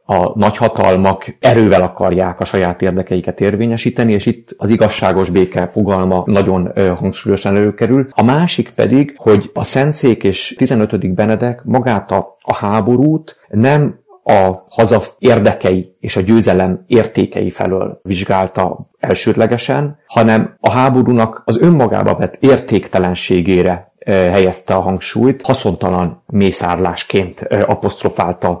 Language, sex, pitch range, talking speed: Hungarian, male, 95-115 Hz, 110 wpm